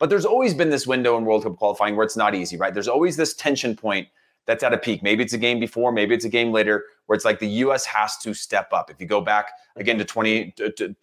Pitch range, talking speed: 100-120 Hz, 280 wpm